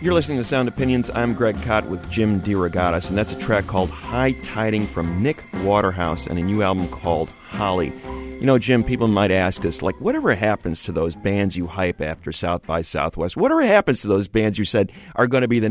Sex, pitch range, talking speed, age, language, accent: male, 85-115 Hz, 220 wpm, 30-49, English, American